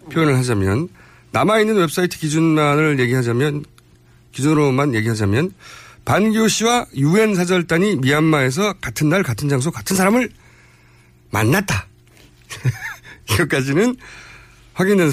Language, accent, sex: Korean, native, male